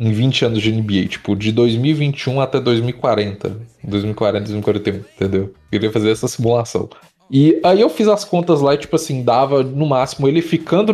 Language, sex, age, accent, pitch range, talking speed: Portuguese, male, 20-39, Brazilian, 115-155 Hz, 180 wpm